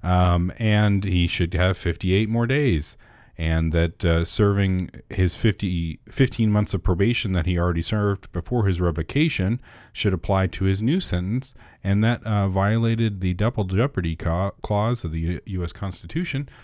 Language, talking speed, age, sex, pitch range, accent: English, 155 wpm, 40-59, male, 80-105 Hz, American